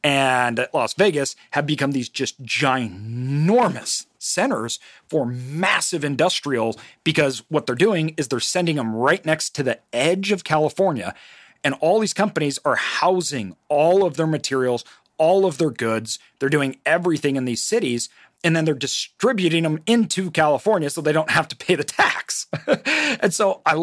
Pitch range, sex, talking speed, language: 125-160 Hz, male, 165 wpm, English